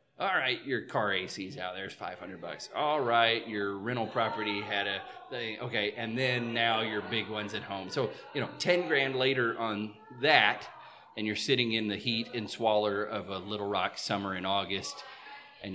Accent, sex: American, male